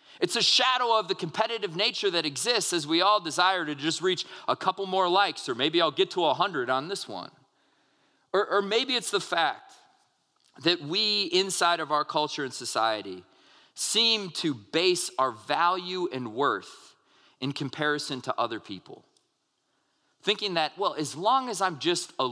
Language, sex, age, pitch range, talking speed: English, male, 30-49, 130-205 Hz, 170 wpm